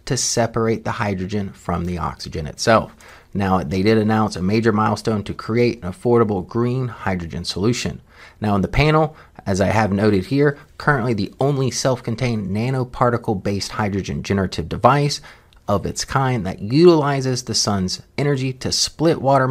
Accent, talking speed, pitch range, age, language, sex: American, 155 wpm, 100-130 Hz, 30-49, English, male